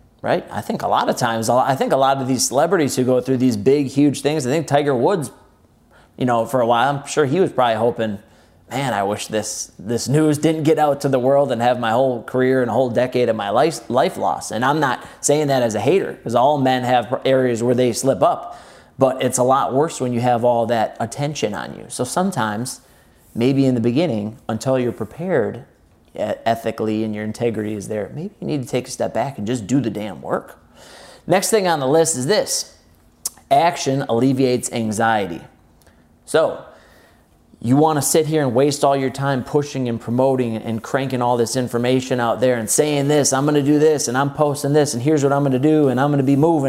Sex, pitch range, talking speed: male, 115-140 Hz, 225 wpm